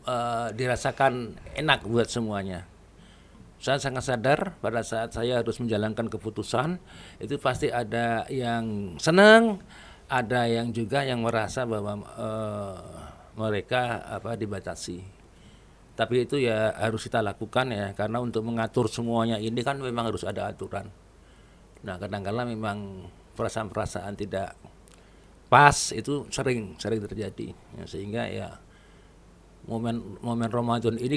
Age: 50-69